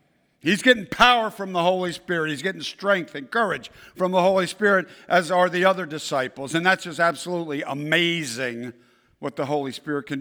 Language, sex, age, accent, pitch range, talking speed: English, male, 60-79, American, 155-210 Hz, 180 wpm